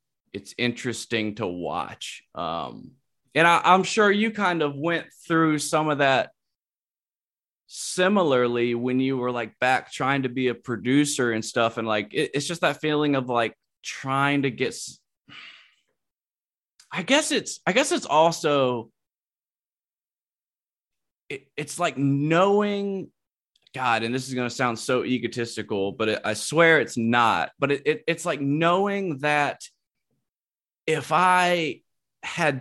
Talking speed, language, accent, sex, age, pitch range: 145 wpm, English, American, male, 20-39, 115-155 Hz